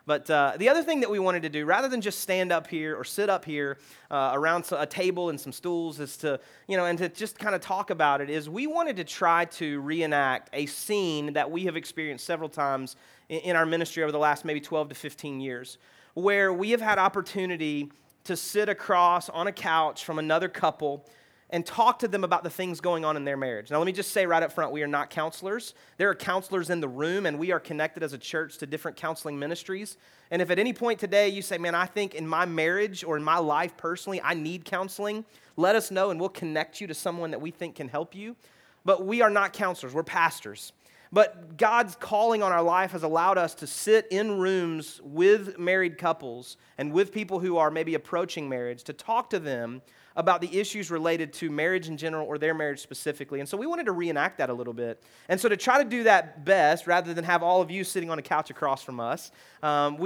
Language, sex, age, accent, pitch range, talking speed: English, male, 30-49, American, 155-195 Hz, 235 wpm